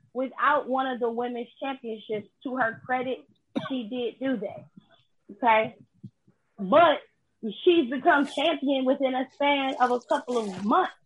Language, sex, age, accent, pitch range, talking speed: English, female, 20-39, American, 230-275 Hz, 140 wpm